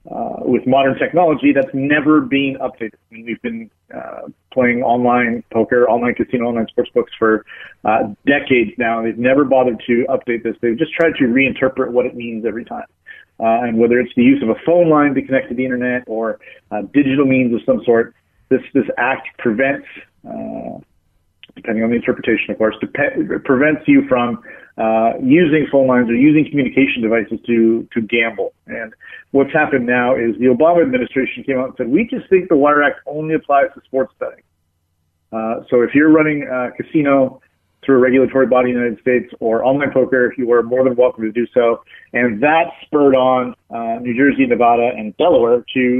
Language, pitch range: English, 115-135 Hz